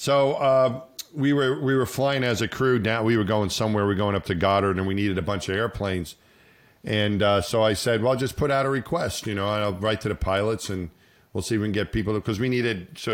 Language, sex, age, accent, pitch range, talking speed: English, male, 40-59, American, 105-140 Hz, 270 wpm